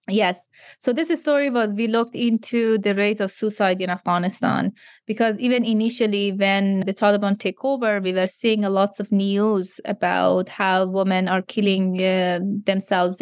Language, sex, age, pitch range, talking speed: English, female, 20-39, 190-225 Hz, 165 wpm